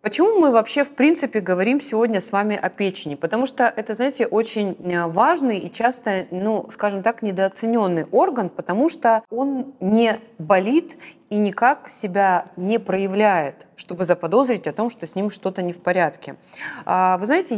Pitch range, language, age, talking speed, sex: 180-230 Hz, Russian, 20-39, 160 wpm, female